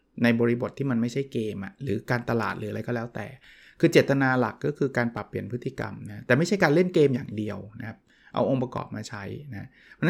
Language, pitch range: Thai, 115-145 Hz